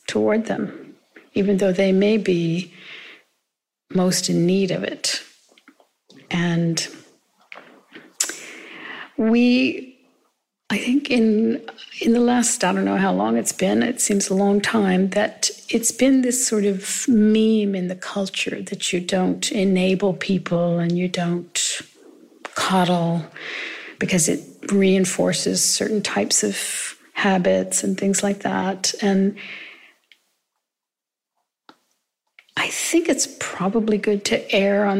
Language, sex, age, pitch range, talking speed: English, female, 50-69, 185-215 Hz, 120 wpm